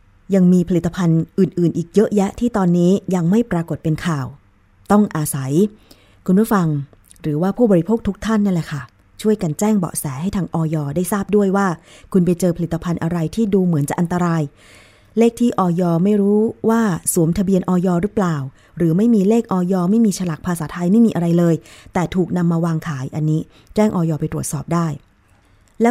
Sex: female